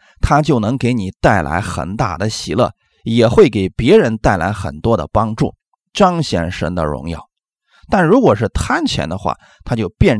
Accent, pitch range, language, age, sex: native, 100-150 Hz, Chinese, 30-49, male